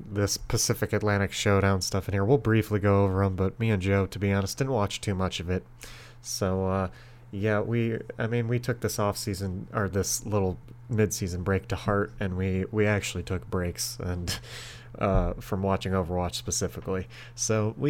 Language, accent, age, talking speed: English, American, 30-49, 190 wpm